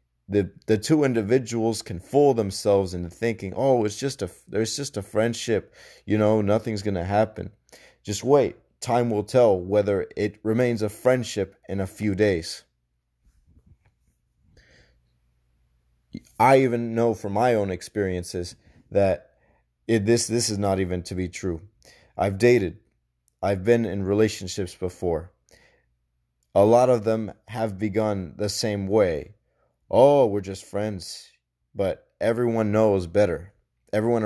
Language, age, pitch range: English, 30-49, 85-110 Hz